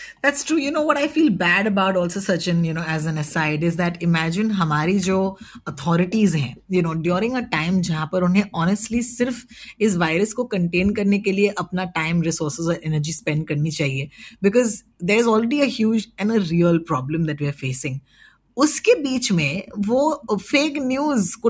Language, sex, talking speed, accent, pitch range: Hindi, female, 195 wpm, native, 165-220 Hz